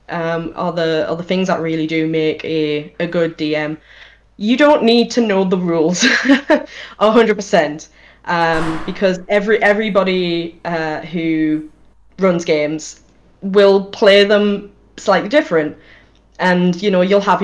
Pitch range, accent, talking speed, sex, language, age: 160-195 Hz, British, 140 wpm, female, English, 10-29